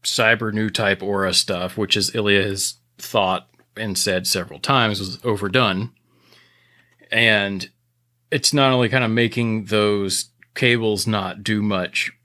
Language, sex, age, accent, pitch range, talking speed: English, male, 30-49, American, 100-120 Hz, 130 wpm